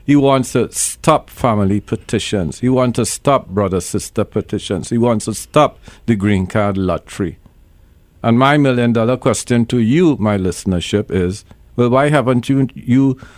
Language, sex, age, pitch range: English, male, 50-69, 100-135 Hz